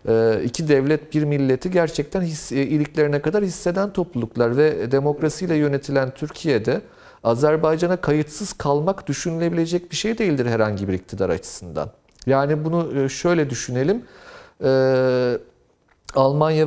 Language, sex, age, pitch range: Turkish, male, 40-59, 135-170 Hz